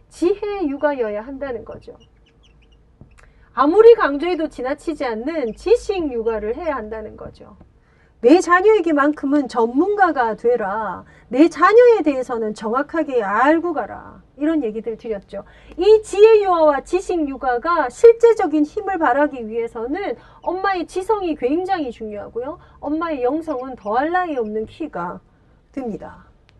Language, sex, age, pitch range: Korean, female, 30-49, 235-355 Hz